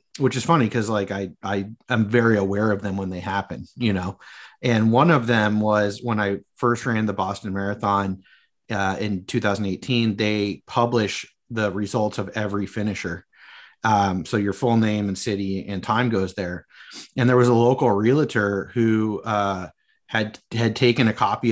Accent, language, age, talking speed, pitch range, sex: American, English, 30-49, 175 wpm, 95-115 Hz, male